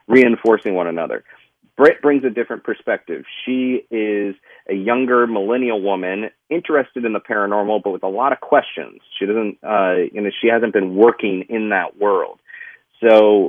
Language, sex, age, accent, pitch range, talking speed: English, male, 40-59, American, 100-125 Hz, 165 wpm